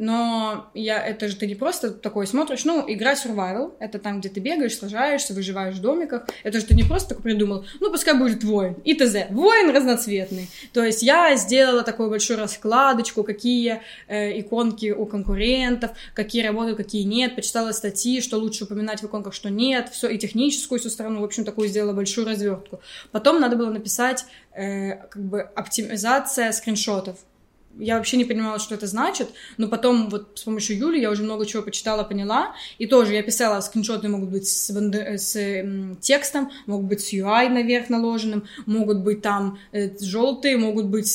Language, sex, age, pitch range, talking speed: Russian, female, 20-39, 205-245 Hz, 180 wpm